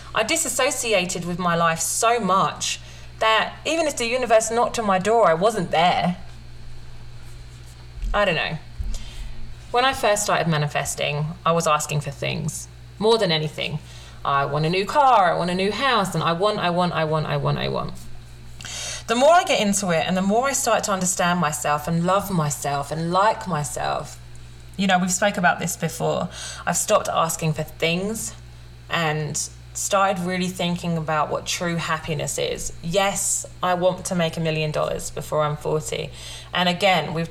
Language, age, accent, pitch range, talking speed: English, 30-49, British, 140-205 Hz, 180 wpm